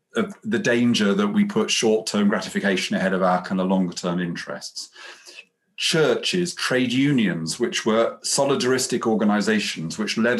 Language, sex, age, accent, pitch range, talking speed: English, male, 40-59, British, 125-200 Hz, 135 wpm